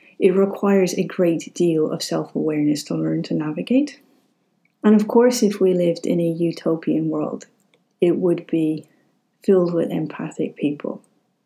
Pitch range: 160-200 Hz